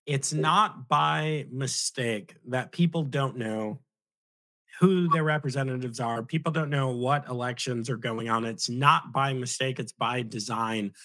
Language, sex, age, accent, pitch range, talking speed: English, male, 30-49, American, 115-140 Hz, 145 wpm